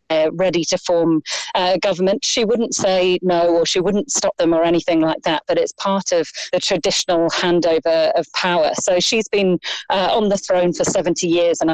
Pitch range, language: 170-225 Hz, English